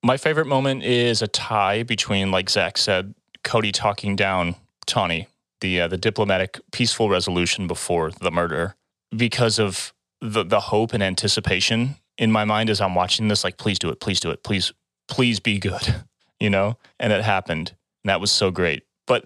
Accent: American